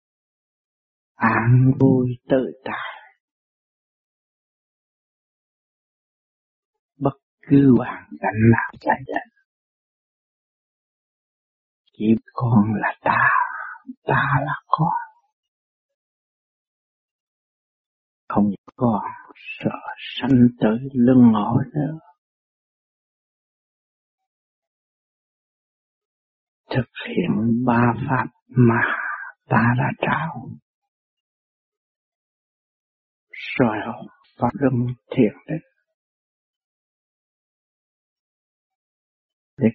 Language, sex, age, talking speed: Vietnamese, male, 50-69, 60 wpm